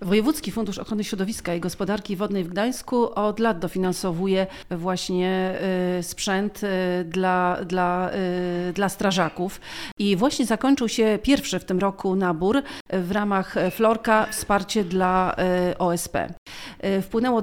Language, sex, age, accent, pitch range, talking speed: Polish, female, 40-59, native, 180-220 Hz, 115 wpm